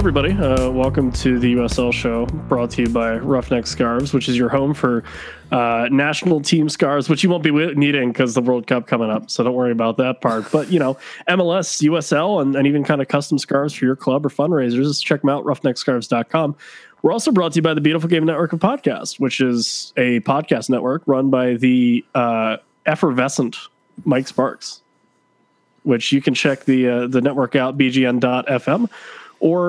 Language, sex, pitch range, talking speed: English, male, 125-160 Hz, 190 wpm